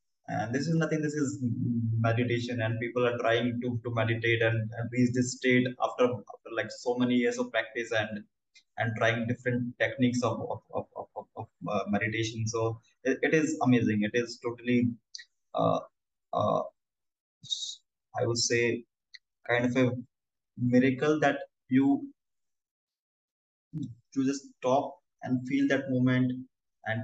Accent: Indian